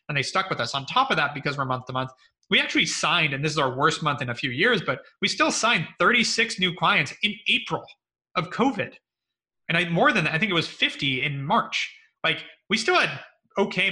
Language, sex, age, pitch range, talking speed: English, male, 30-49, 130-180 Hz, 235 wpm